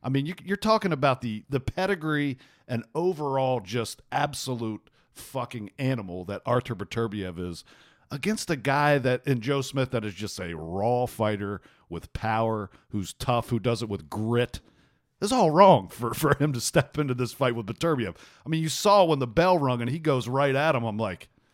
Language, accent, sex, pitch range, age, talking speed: English, American, male, 115-150 Hz, 50-69, 190 wpm